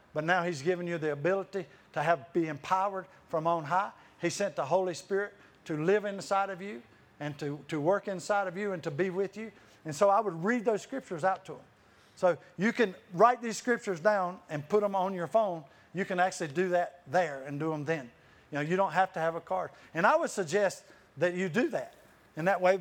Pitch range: 160-195 Hz